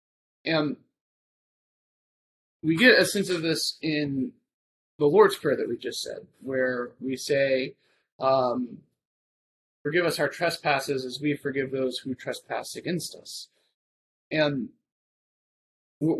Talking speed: 120 wpm